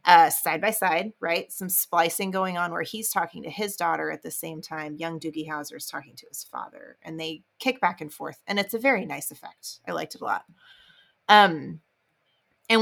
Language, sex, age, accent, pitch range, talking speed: English, female, 30-49, American, 165-230 Hz, 215 wpm